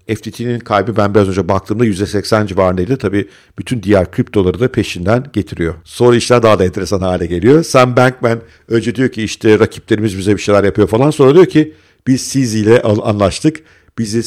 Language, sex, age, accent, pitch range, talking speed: Turkish, male, 50-69, native, 100-125 Hz, 175 wpm